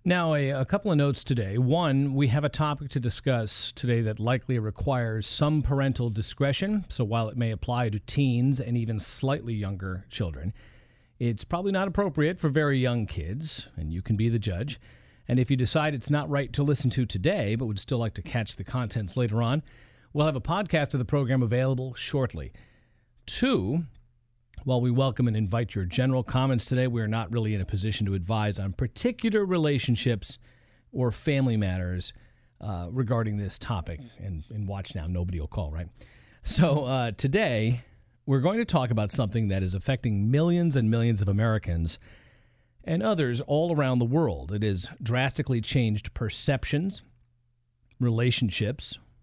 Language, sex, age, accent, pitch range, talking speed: English, male, 40-59, American, 105-140 Hz, 175 wpm